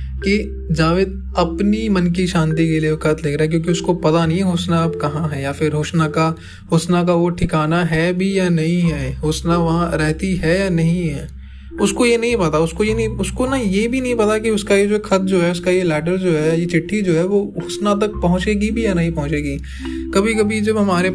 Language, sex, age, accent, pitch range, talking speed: Hindi, male, 20-39, native, 145-180 Hz, 235 wpm